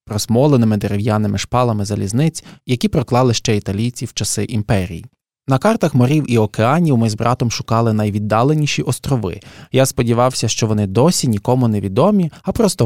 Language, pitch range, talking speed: Ukrainian, 110-140 Hz, 145 wpm